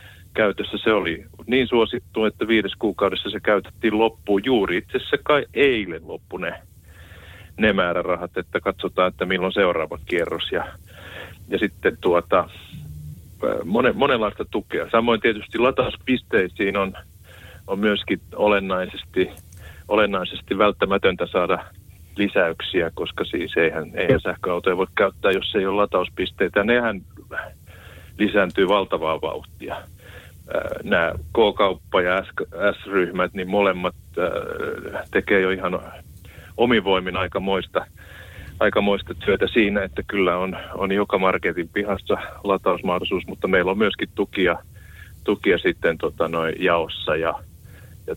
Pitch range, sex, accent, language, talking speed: 90-110 Hz, male, native, Finnish, 115 wpm